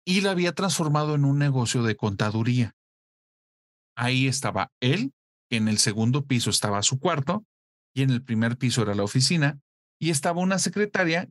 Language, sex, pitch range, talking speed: Spanish, male, 110-145 Hz, 170 wpm